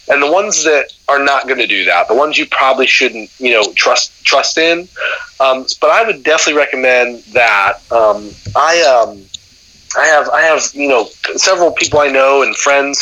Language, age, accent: English, 30-49, American